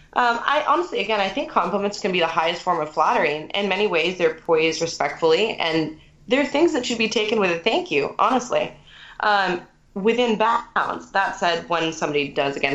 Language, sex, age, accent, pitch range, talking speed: English, female, 20-39, American, 155-200 Hz, 200 wpm